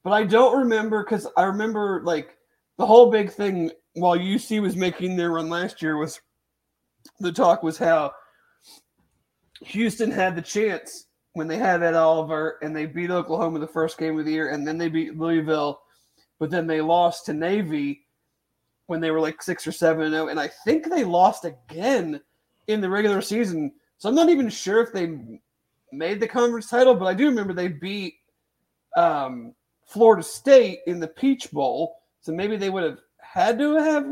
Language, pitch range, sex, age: English, 155-215 Hz, male, 30-49